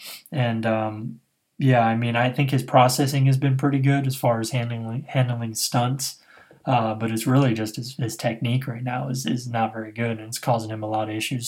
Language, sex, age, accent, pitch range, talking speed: English, male, 20-39, American, 115-135 Hz, 220 wpm